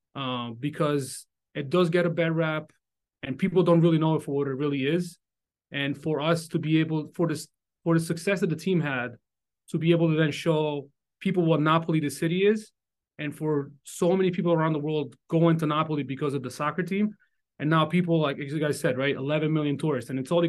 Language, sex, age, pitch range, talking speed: English, male, 30-49, 140-170 Hz, 225 wpm